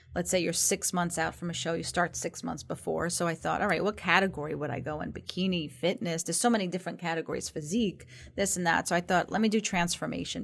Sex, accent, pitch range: female, American, 160-185 Hz